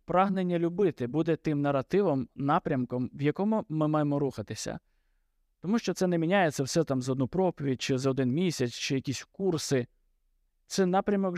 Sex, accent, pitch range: male, native, 115-165 Hz